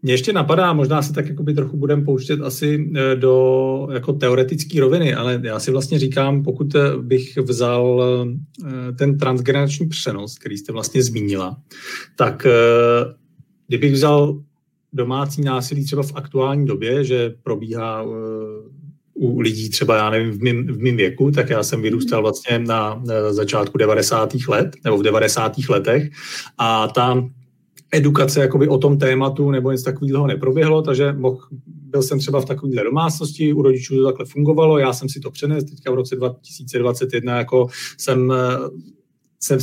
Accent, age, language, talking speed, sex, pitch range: native, 40-59, Czech, 155 wpm, male, 130-145 Hz